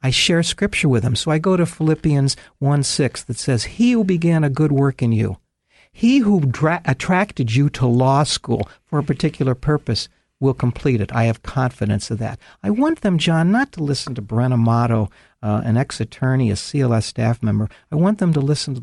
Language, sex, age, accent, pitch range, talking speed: English, male, 60-79, American, 115-155 Hz, 200 wpm